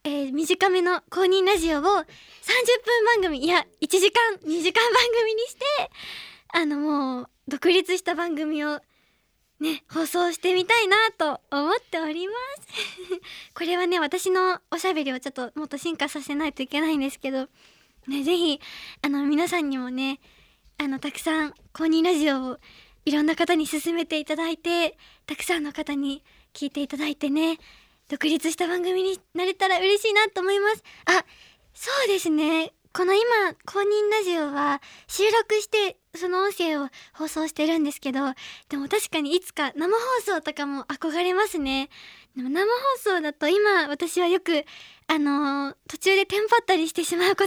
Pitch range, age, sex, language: 295-380 Hz, 20-39, male, Japanese